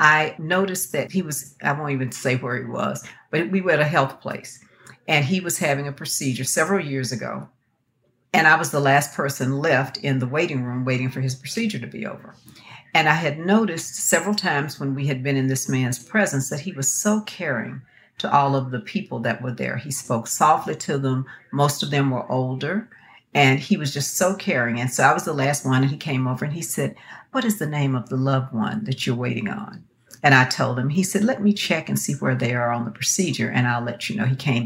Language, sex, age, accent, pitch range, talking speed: English, female, 50-69, American, 130-165 Hz, 240 wpm